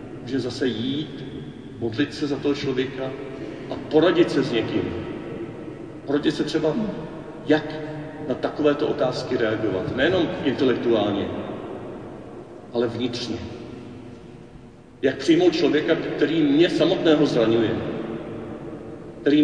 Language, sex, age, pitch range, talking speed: Czech, male, 40-59, 120-155 Hz, 100 wpm